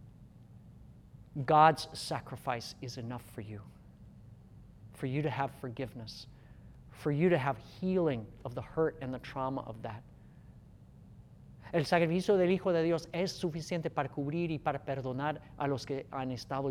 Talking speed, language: 150 wpm, English